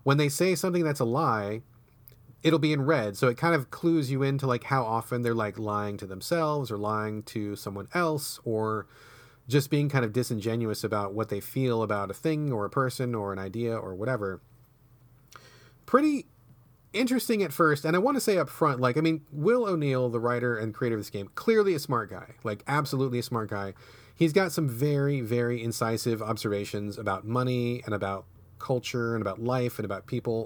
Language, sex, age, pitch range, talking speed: English, male, 30-49, 110-150 Hz, 200 wpm